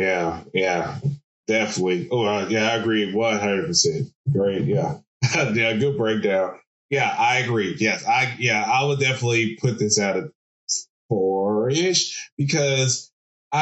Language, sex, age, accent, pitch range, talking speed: English, male, 20-39, American, 115-155 Hz, 135 wpm